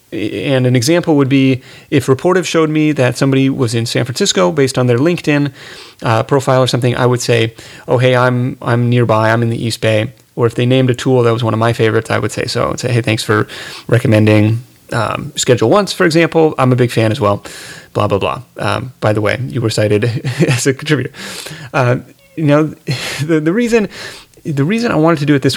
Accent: American